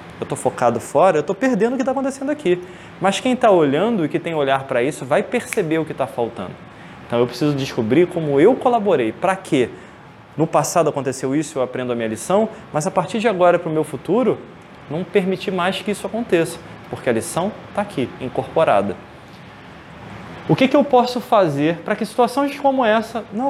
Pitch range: 150-220 Hz